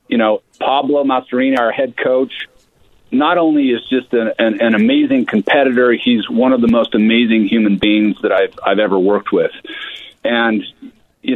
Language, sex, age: English, male, 40-59